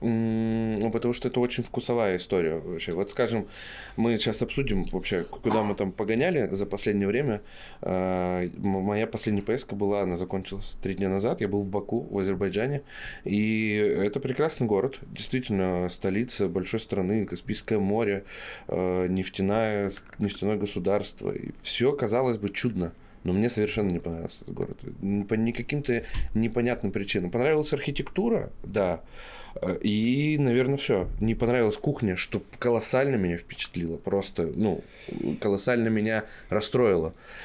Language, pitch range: Russian, 100-120 Hz